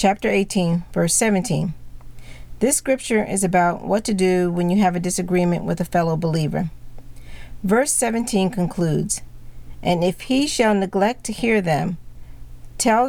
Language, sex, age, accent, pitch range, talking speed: English, female, 40-59, American, 170-210 Hz, 145 wpm